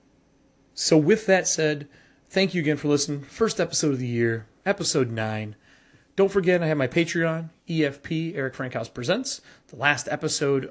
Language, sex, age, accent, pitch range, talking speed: English, male, 30-49, American, 125-160 Hz, 165 wpm